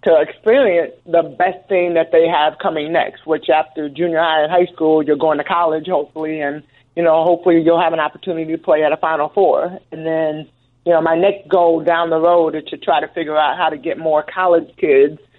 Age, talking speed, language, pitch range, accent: 30-49, 225 wpm, English, 155-175 Hz, American